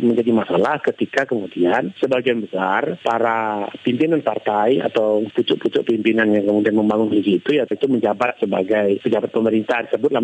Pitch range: 105-125 Hz